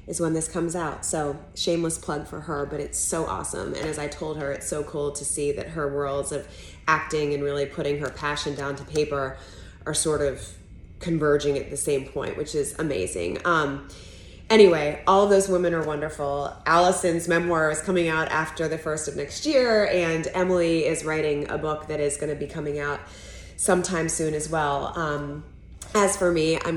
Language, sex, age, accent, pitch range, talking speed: English, female, 20-39, American, 140-170 Hz, 200 wpm